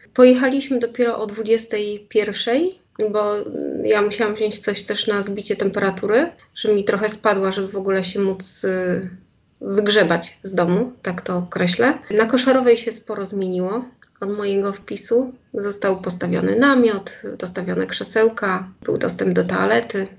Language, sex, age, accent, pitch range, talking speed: Polish, female, 30-49, native, 200-235 Hz, 135 wpm